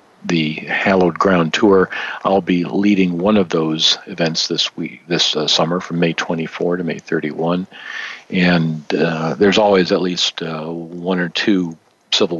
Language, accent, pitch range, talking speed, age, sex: English, American, 85-95 Hz, 160 wpm, 50-69, male